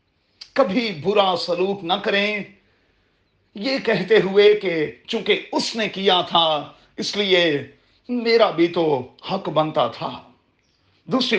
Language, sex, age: Urdu, male, 40-59